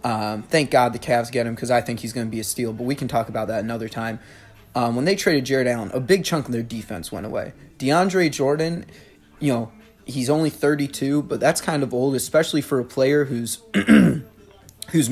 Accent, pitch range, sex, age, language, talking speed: American, 120-145 Hz, male, 20-39, English, 220 wpm